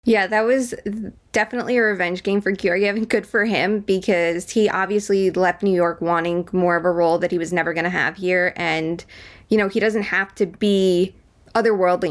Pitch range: 185-225 Hz